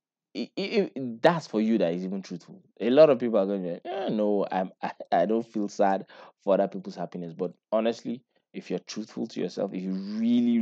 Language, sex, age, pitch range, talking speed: English, male, 20-39, 95-120 Hz, 225 wpm